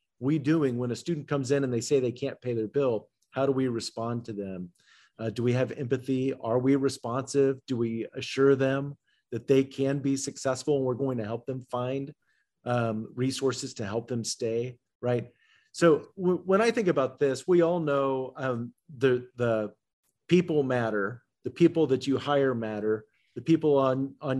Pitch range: 120-145 Hz